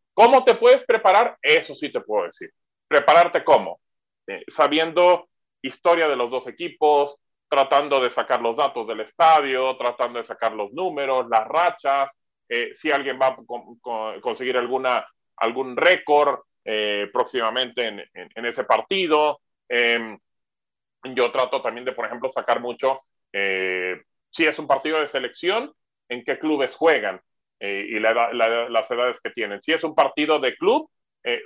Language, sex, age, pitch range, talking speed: English, male, 30-49, 115-150 Hz, 160 wpm